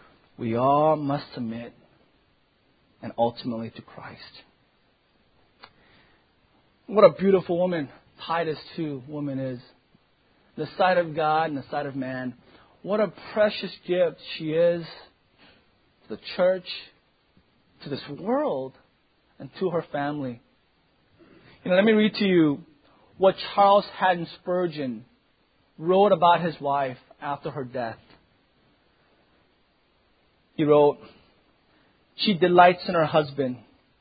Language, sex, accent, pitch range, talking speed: English, male, American, 150-215 Hz, 115 wpm